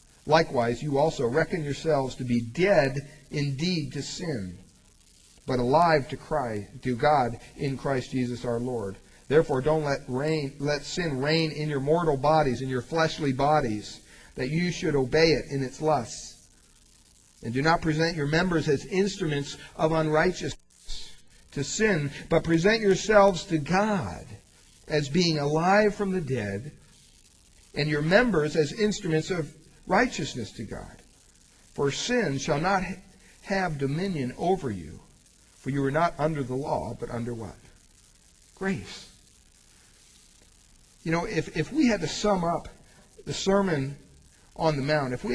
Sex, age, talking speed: male, 40-59, 150 wpm